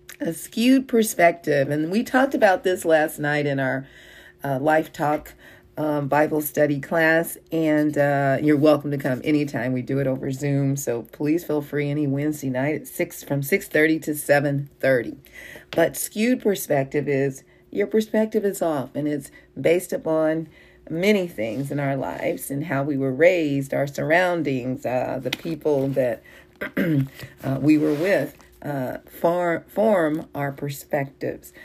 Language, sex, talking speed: English, female, 155 wpm